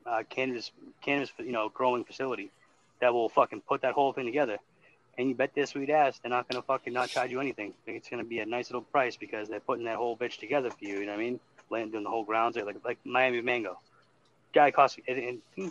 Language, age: English, 30-49